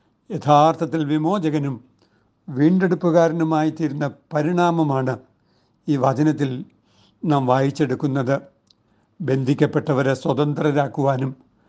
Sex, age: male, 60-79